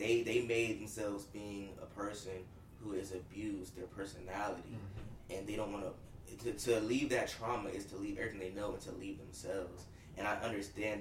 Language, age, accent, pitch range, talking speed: English, 20-39, American, 95-110 Hz, 185 wpm